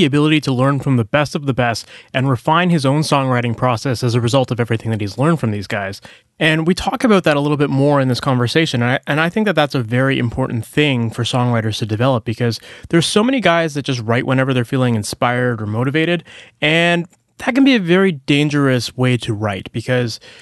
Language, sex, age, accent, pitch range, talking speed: English, male, 20-39, American, 125-170 Hz, 225 wpm